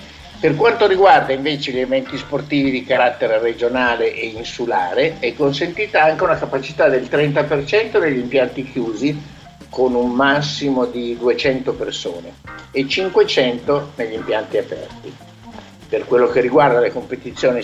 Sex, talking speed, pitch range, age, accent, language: male, 135 wpm, 125-165 Hz, 60-79, native, Italian